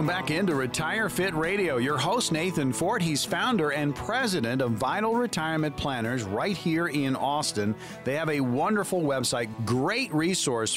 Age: 50-69